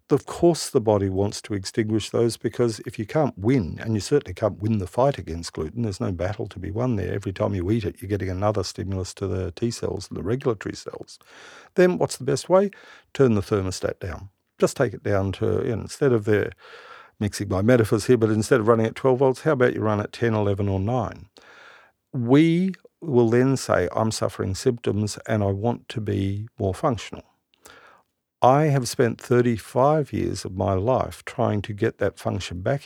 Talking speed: 200 wpm